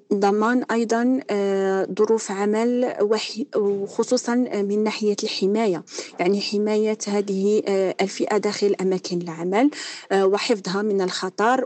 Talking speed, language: 95 wpm, Arabic